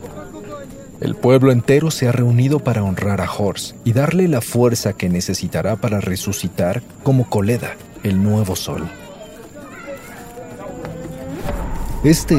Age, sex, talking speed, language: 50-69, male, 115 wpm, Spanish